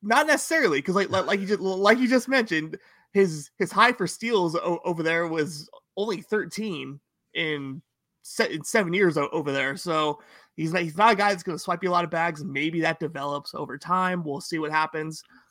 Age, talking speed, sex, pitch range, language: 20-39, 215 wpm, male, 145-180 Hz, English